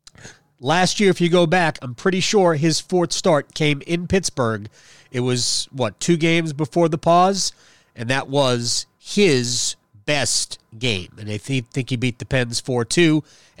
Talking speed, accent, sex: 165 wpm, American, male